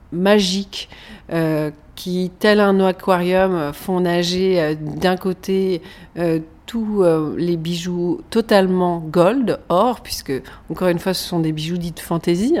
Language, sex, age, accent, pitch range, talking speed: French, female, 40-59, French, 160-195 Hz, 140 wpm